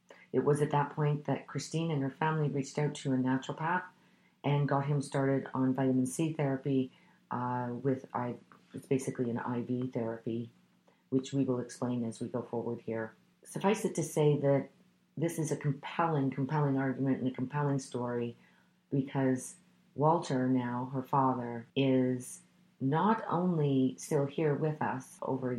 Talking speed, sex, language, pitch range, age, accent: 160 wpm, female, English, 130-155 Hz, 40-59, American